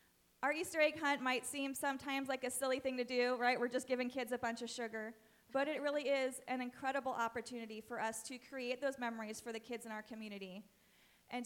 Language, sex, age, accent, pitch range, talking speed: English, female, 30-49, American, 245-285 Hz, 220 wpm